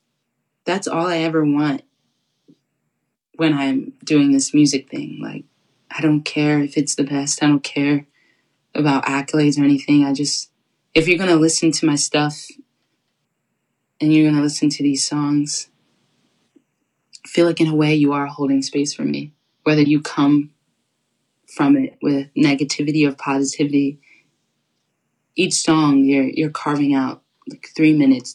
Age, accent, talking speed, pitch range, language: 20-39, American, 155 wpm, 145-180 Hz, English